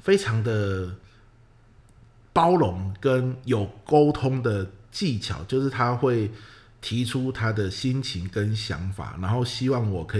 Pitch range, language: 100-120 Hz, Chinese